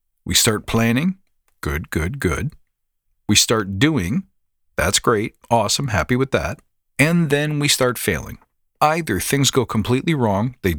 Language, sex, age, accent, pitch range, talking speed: English, male, 40-59, American, 105-130 Hz, 145 wpm